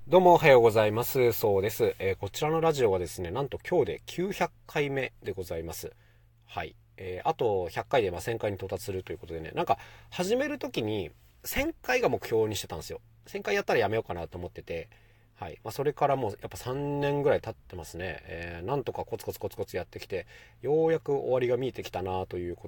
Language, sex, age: Japanese, male, 40-59